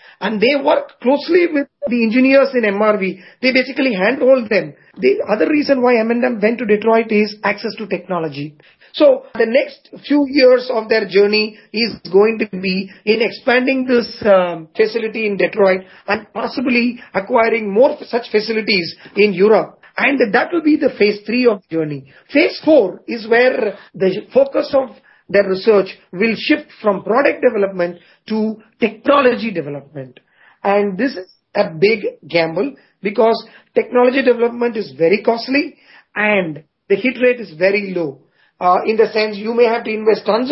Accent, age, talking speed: Indian, 40-59, 160 wpm